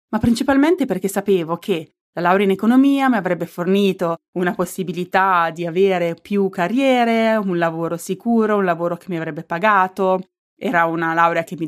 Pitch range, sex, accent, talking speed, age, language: 170-200 Hz, female, native, 165 wpm, 30-49, Italian